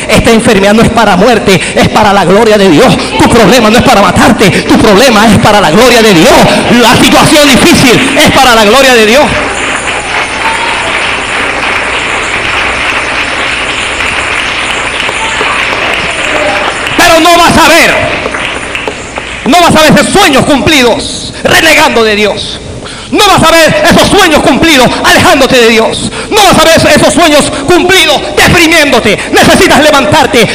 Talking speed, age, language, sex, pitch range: 135 wpm, 40-59, Spanish, male, 245-325 Hz